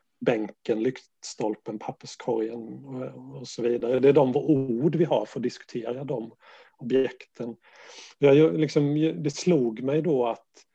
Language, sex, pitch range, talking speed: Swedish, male, 120-145 Hz, 125 wpm